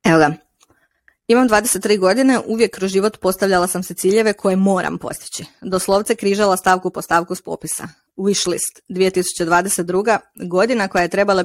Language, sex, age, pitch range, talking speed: Croatian, female, 20-39, 180-210 Hz, 145 wpm